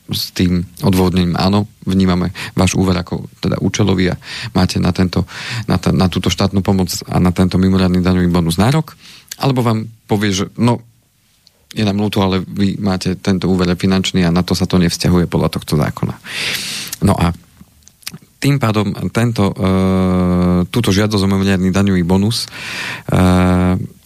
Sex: male